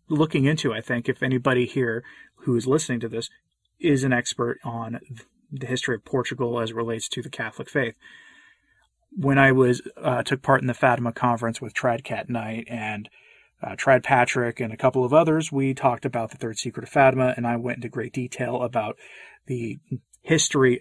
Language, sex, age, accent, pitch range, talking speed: English, male, 30-49, American, 115-135 Hz, 195 wpm